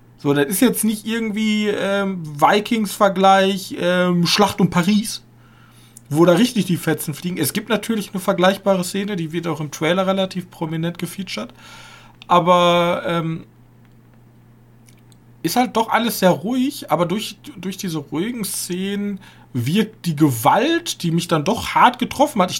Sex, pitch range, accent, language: male, 140-200 Hz, German, German